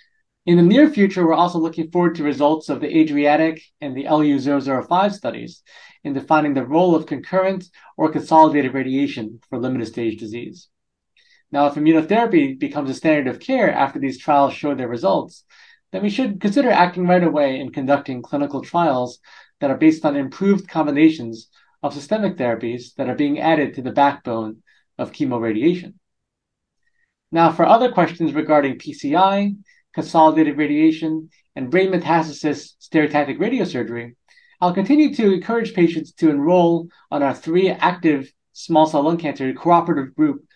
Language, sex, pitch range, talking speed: English, male, 140-185 Hz, 150 wpm